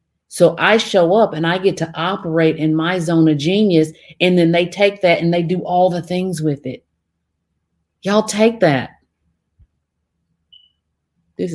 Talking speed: 160 wpm